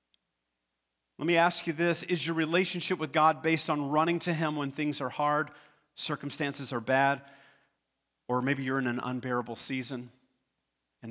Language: English